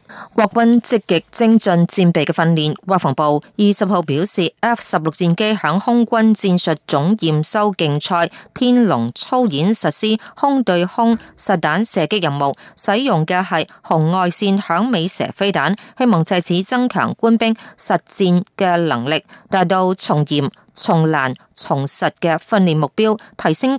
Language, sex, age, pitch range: Chinese, female, 30-49, 160-215 Hz